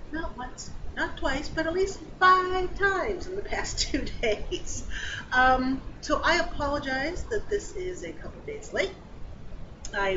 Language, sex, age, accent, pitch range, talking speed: English, female, 40-59, American, 205-325 Hz, 160 wpm